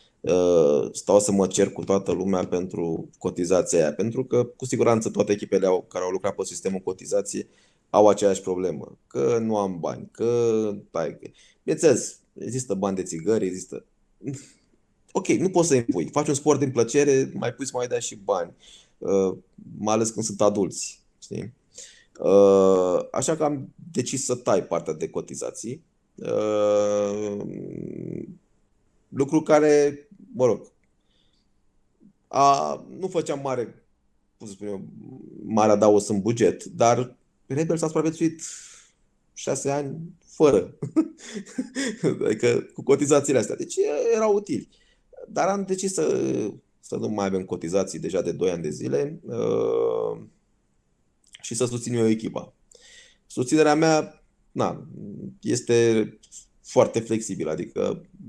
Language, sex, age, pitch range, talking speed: Romanian, male, 20-39, 100-160 Hz, 135 wpm